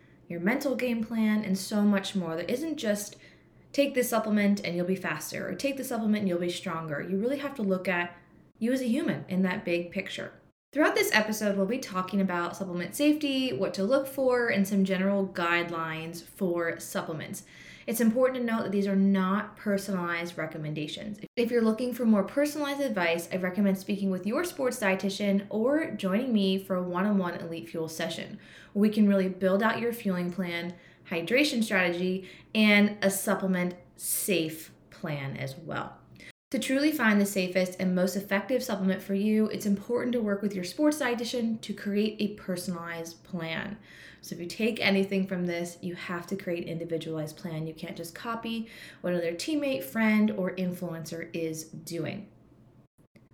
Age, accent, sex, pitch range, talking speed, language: 20-39, American, female, 175-225 Hz, 180 wpm, English